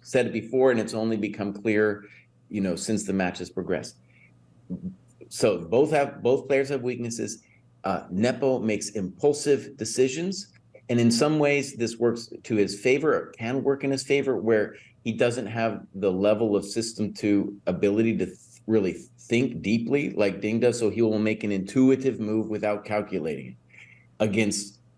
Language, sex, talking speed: English, male, 170 wpm